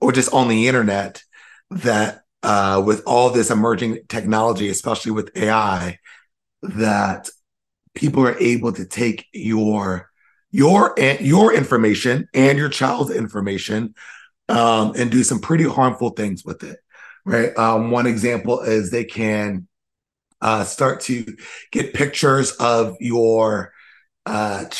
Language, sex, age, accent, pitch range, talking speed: English, male, 30-49, American, 105-120 Hz, 130 wpm